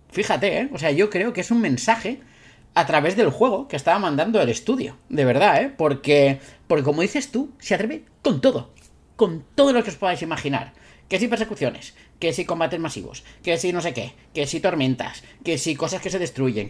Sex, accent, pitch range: male, Spanish, 145-220 Hz